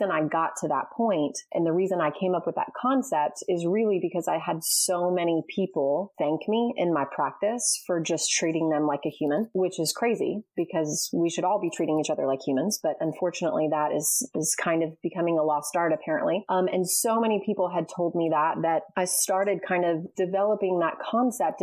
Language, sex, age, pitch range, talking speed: English, female, 30-49, 160-190 Hz, 210 wpm